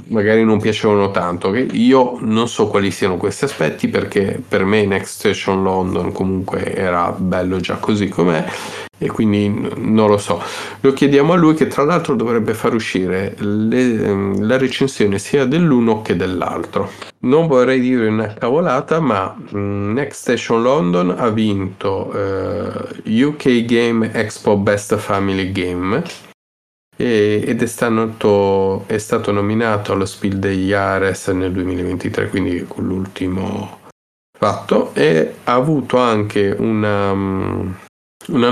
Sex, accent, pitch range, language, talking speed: male, native, 95-115 Hz, Italian, 130 wpm